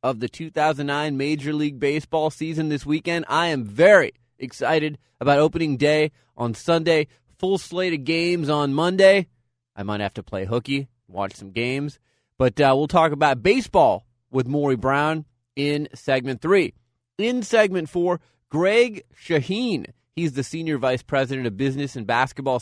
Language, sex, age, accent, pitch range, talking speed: English, male, 30-49, American, 135-180 Hz, 155 wpm